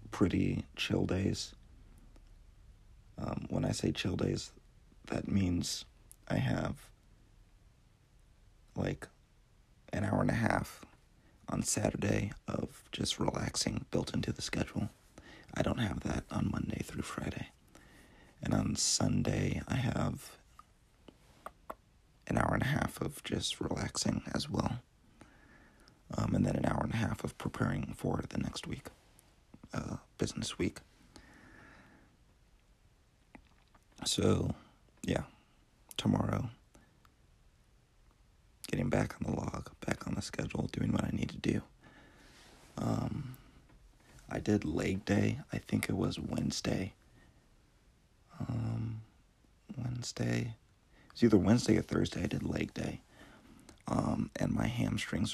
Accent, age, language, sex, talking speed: American, 40-59, English, male, 120 wpm